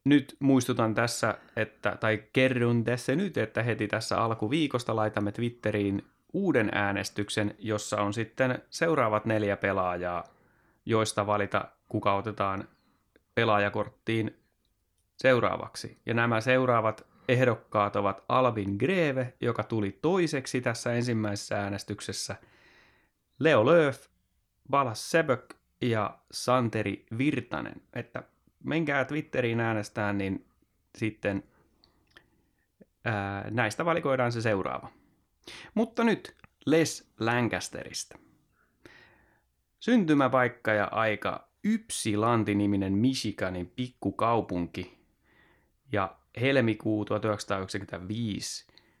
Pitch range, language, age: 105-125 Hz, Finnish, 30-49